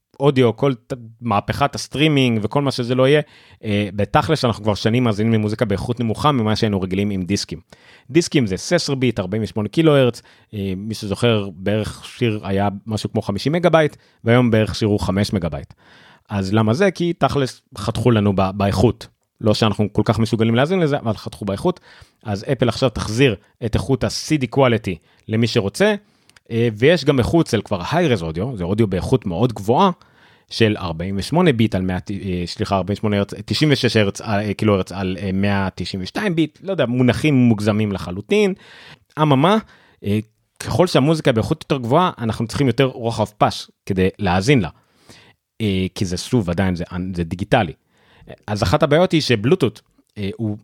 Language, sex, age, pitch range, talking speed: Hebrew, male, 30-49, 100-135 Hz, 160 wpm